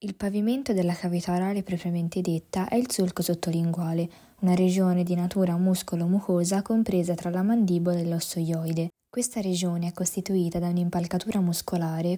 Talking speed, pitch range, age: 145 wpm, 175-215 Hz, 20-39